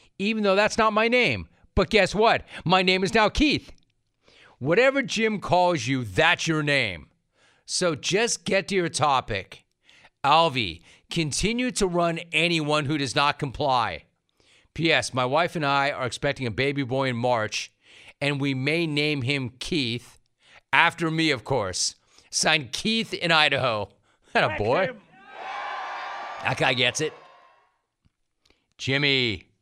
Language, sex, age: English, male, 40-59